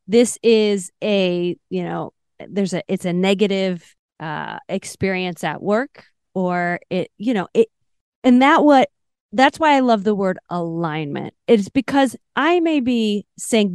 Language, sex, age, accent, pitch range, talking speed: English, female, 30-49, American, 190-245 Hz, 155 wpm